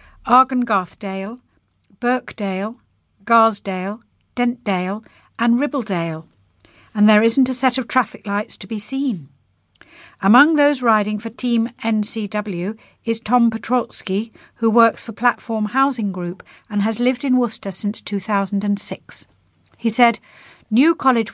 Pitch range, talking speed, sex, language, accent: 200-245 Hz, 120 wpm, female, English, British